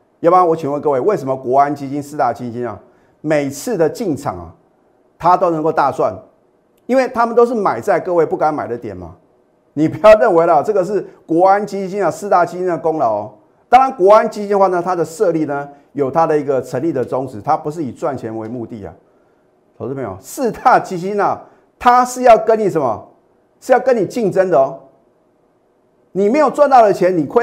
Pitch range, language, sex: 135-205 Hz, Chinese, male